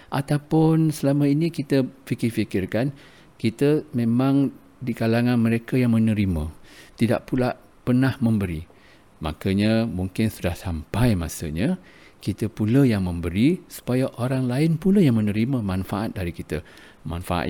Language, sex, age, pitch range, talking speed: English, male, 50-69, 95-125 Hz, 120 wpm